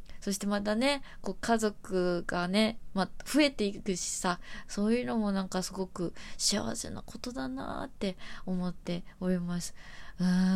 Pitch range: 185-235 Hz